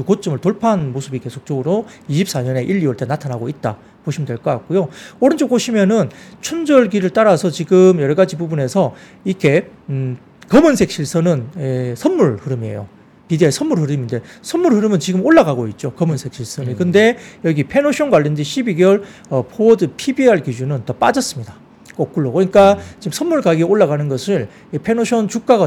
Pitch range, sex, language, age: 135-215 Hz, male, Korean, 40-59